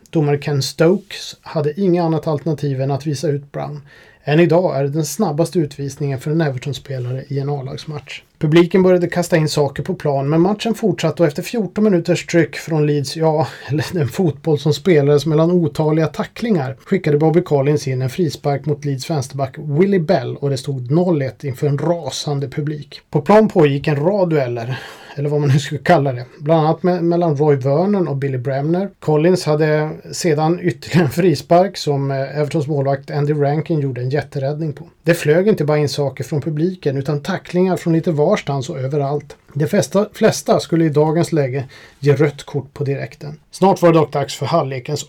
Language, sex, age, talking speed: Swedish, male, 30-49, 185 wpm